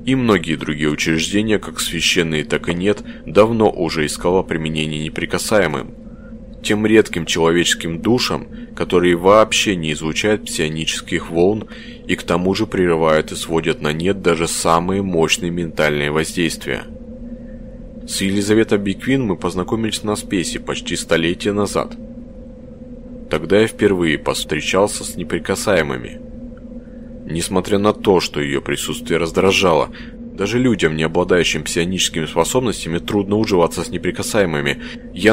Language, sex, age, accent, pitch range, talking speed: Russian, male, 20-39, native, 85-125 Hz, 120 wpm